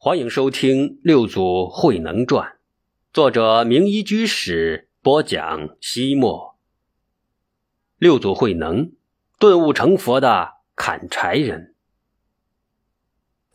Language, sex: Chinese, male